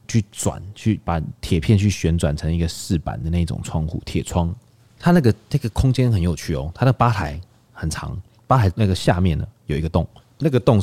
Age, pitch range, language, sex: 20-39, 85-110 Hz, Chinese, male